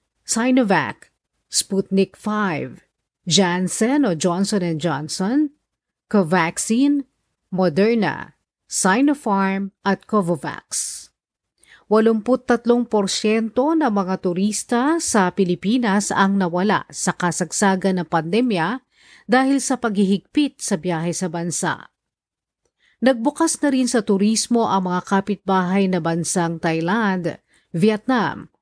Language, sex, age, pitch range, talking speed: Filipino, female, 50-69, 180-240 Hz, 90 wpm